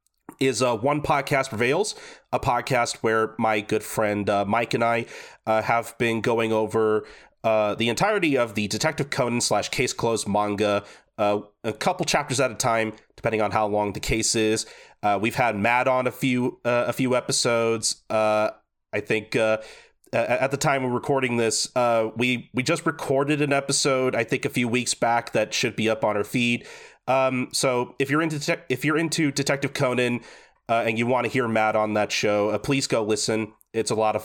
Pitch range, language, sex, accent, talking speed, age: 110-135 Hz, English, male, American, 200 wpm, 30-49